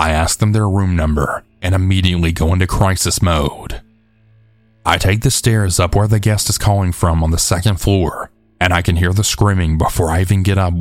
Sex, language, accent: male, English, American